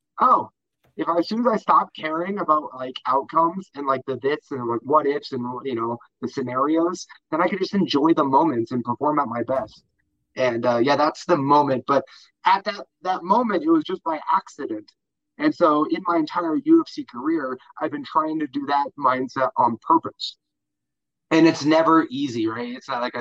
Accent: American